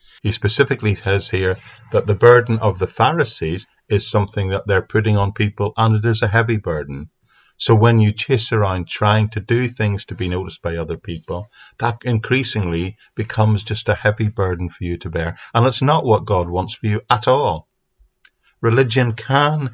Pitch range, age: 90-115 Hz, 50-69